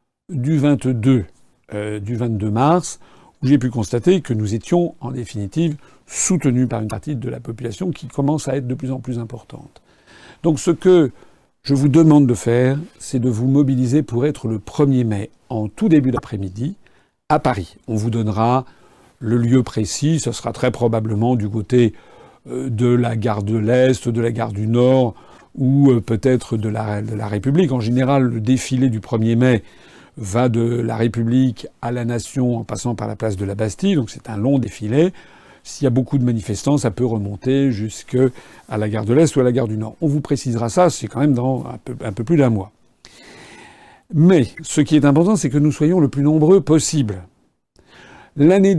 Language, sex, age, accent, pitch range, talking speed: French, male, 50-69, French, 115-145 Hz, 195 wpm